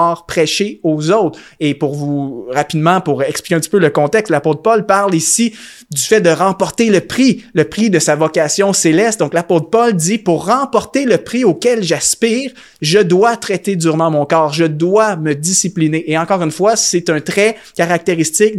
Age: 30-49